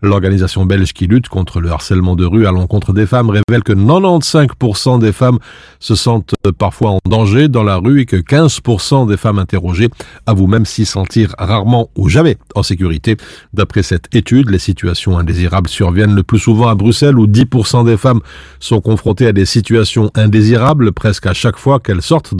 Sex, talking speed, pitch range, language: male, 185 wpm, 100-125 Hz, French